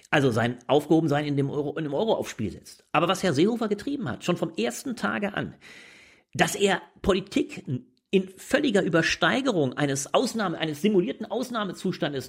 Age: 40-59